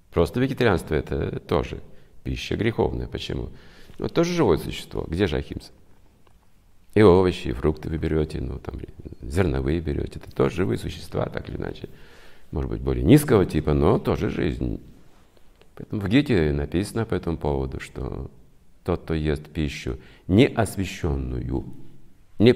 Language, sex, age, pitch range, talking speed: Russian, male, 50-69, 75-95 Hz, 145 wpm